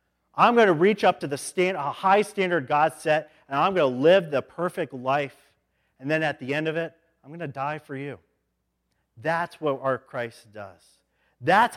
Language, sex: English, male